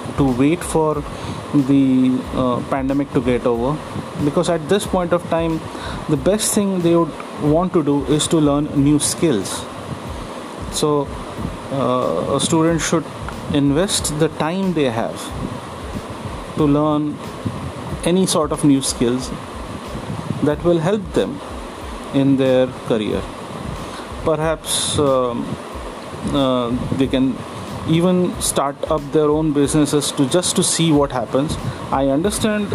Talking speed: 130 wpm